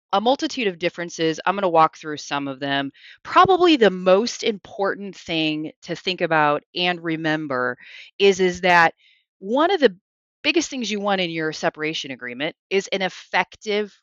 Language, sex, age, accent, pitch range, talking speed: English, female, 30-49, American, 155-205 Hz, 165 wpm